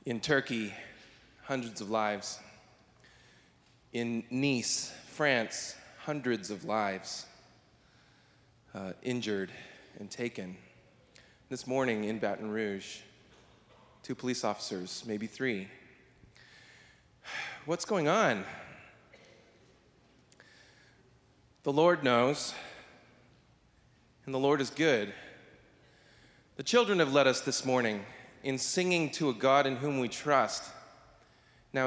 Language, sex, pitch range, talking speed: English, male, 115-150 Hz, 100 wpm